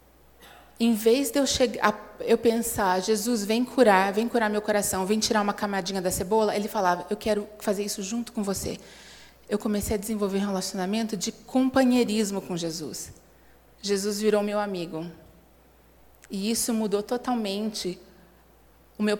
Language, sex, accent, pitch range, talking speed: Portuguese, female, Brazilian, 190-230 Hz, 155 wpm